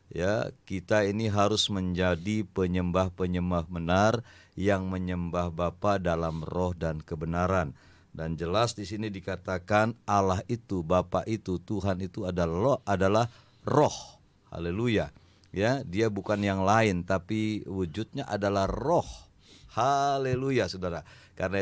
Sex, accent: male, Indonesian